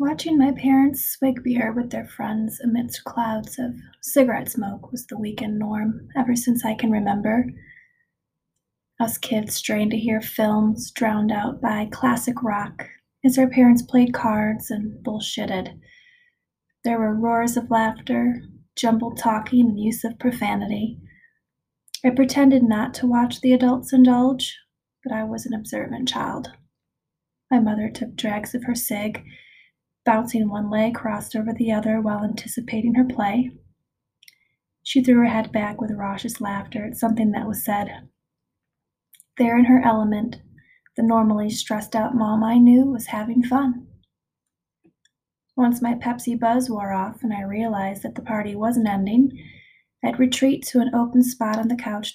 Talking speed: 155 wpm